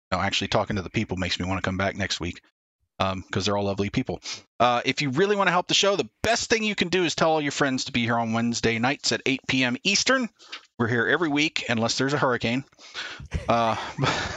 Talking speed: 245 wpm